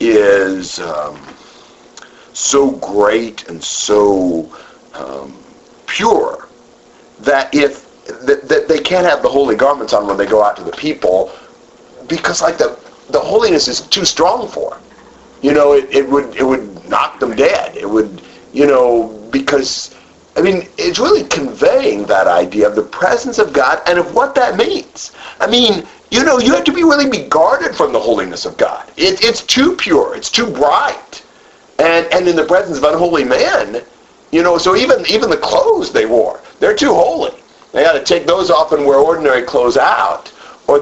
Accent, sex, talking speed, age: American, male, 180 wpm, 50-69